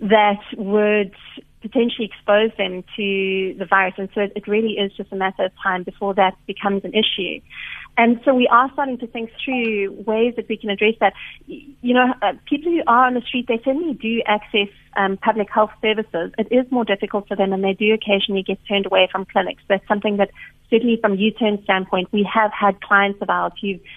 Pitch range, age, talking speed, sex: 195-225 Hz, 30-49, 210 wpm, female